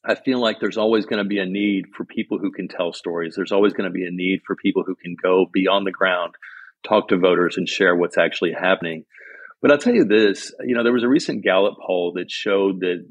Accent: American